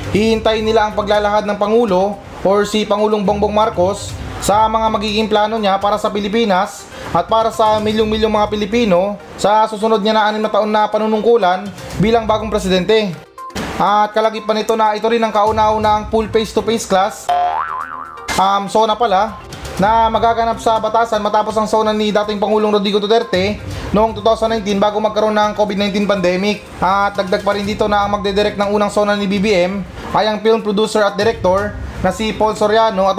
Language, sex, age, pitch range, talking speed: Filipino, male, 20-39, 205-220 Hz, 170 wpm